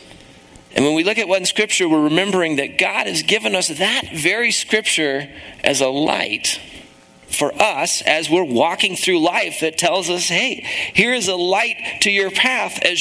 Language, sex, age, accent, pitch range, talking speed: English, male, 40-59, American, 125-190 Hz, 180 wpm